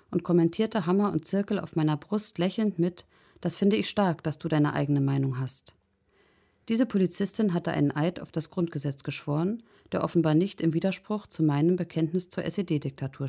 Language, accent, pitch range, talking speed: German, German, 150-195 Hz, 175 wpm